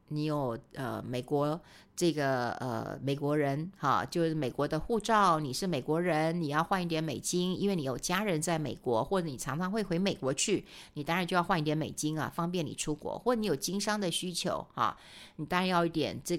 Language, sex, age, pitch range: Chinese, female, 50-69, 155-210 Hz